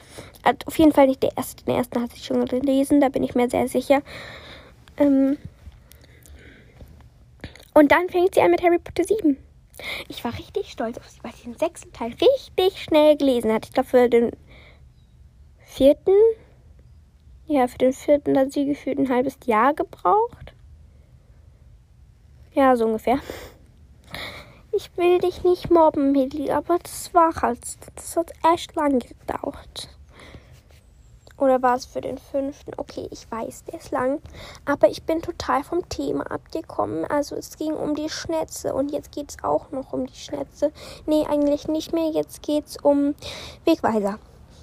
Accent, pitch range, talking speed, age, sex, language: German, 250-315 Hz, 165 wpm, 10-29, female, German